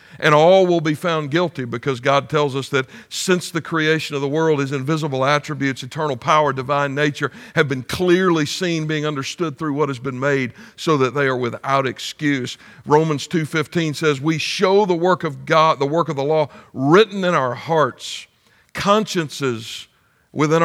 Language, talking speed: English, 175 wpm